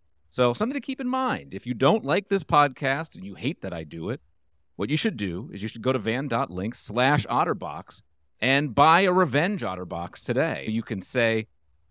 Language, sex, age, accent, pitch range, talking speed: English, male, 40-59, American, 100-145 Hz, 200 wpm